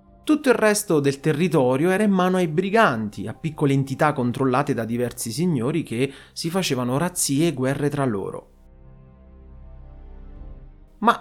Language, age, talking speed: Italian, 30-49, 140 wpm